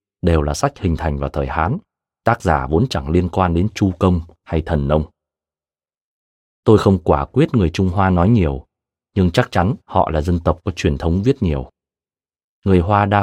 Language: Vietnamese